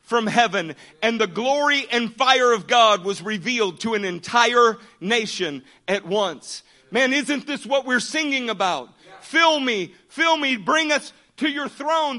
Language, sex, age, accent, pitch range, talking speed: English, male, 50-69, American, 225-290 Hz, 160 wpm